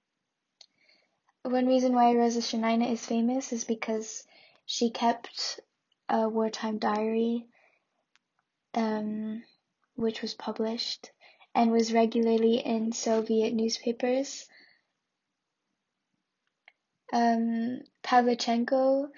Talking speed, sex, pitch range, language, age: 80 wpm, female, 220-240 Hz, English, 10-29